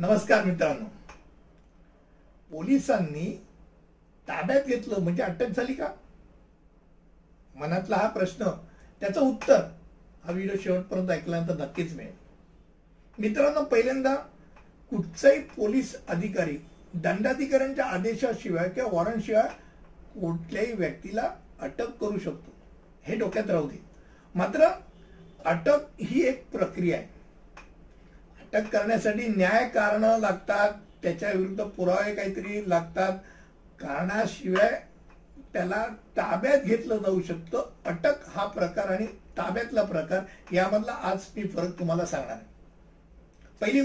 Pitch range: 180-235 Hz